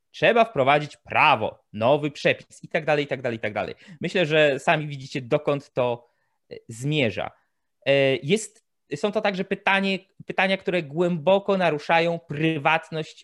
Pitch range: 135-180 Hz